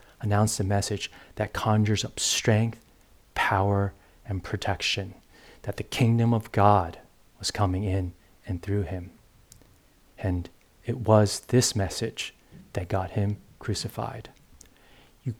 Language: English